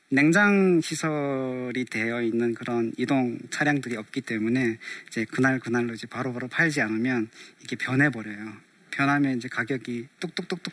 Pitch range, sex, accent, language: 120-150 Hz, male, native, Korean